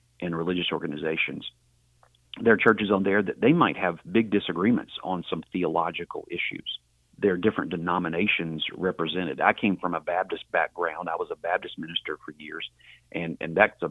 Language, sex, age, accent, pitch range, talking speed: English, male, 40-59, American, 80-95 Hz, 175 wpm